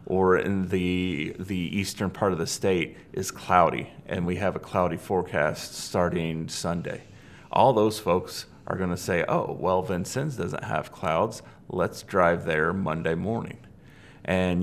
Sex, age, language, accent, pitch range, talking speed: male, 30-49, English, American, 90-105 Hz, 155 wpm